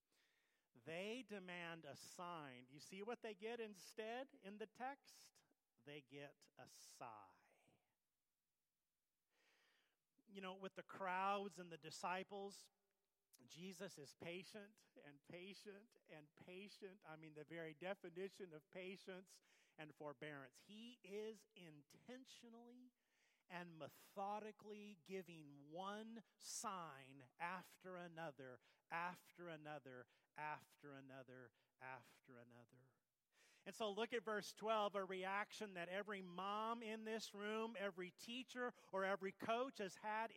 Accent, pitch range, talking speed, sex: American, 145-210 Hz, 115 wpm, male